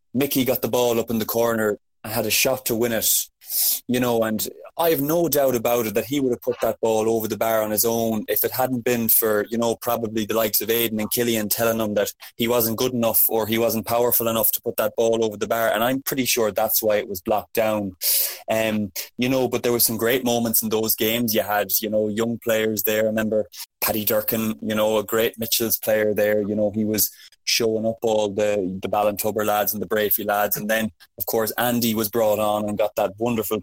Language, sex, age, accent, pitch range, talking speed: English, male, 20-39, Irish, 105-120 Hz, 245 wpm